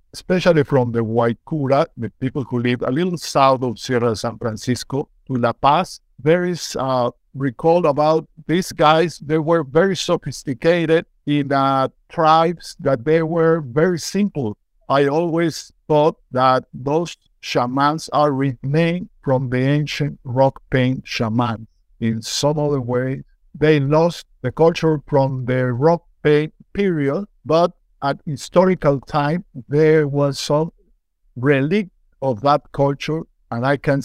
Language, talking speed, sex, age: English, 135 wpm, male, 60-79